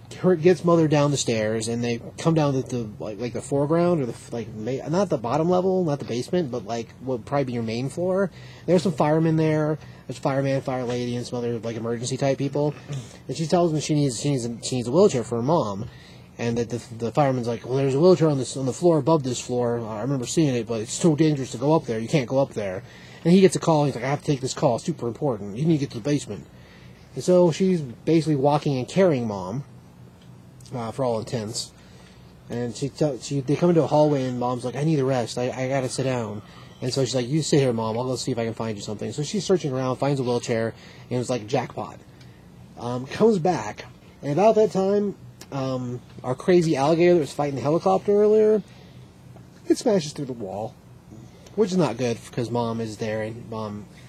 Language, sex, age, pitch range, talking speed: English, male, 30-49, 120-160 Hz, 245 wpm